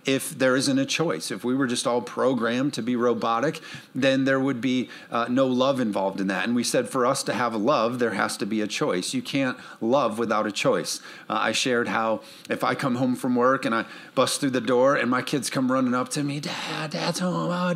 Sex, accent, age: male, American, 50-69